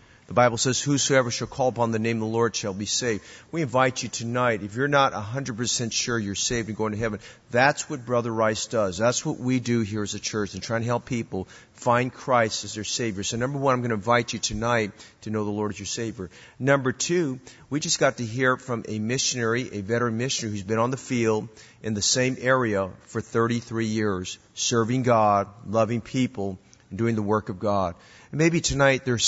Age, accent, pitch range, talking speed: 40-59, American, 110-130 Hz, 220 wpm